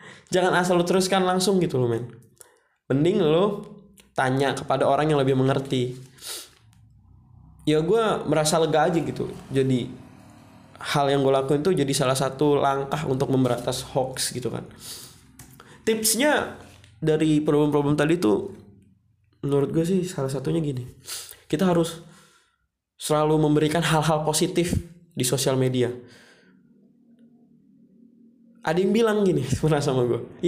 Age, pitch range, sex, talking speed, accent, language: 20-39, 130-180 Hz, male, 125 wpm, native, Indonesian